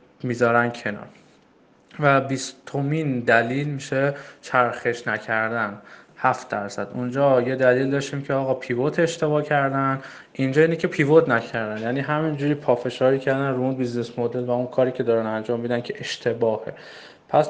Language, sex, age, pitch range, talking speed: Persian, male, 20-39, 125-140 Hz, 145 wpm